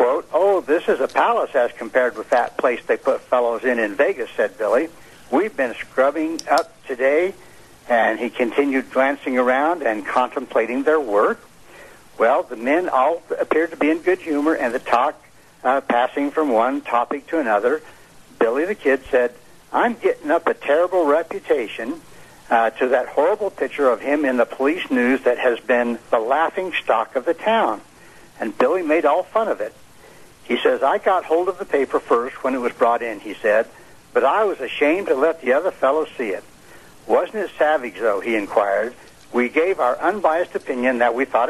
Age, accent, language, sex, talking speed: 60-79, American, English, male, 190 wpm